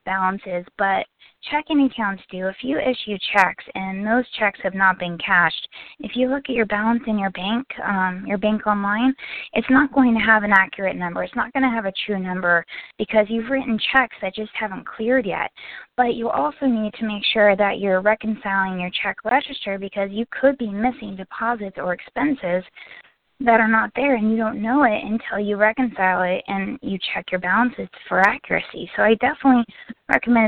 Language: English